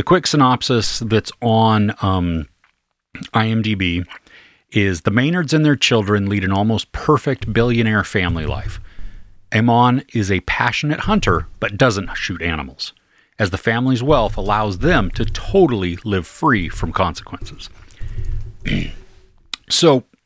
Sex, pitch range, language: male, 95-125 Hz, English